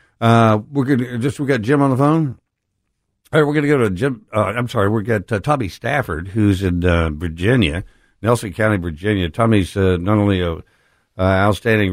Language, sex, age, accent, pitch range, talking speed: English, male, 60-79, American, 90-110 Hz, 200 wpm